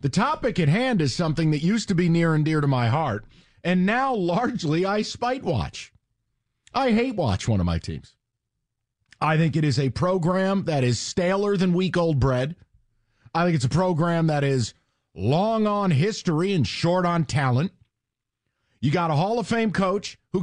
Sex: male